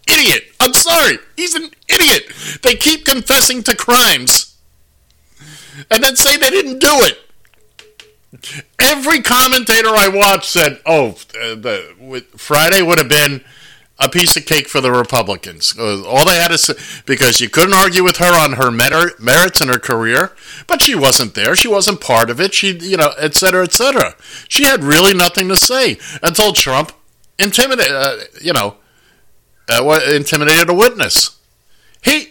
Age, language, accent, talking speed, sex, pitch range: 50-69, English, American, 155 wpm, male, 155-240 Hz